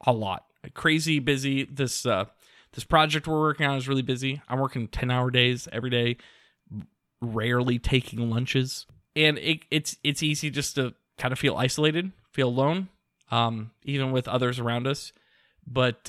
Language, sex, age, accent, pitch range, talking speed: English, male, 20-39, American, 120-155 Hz, 160 wpm